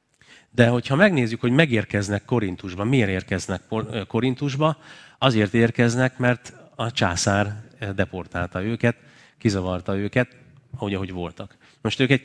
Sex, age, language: male, 30-49, Hungarian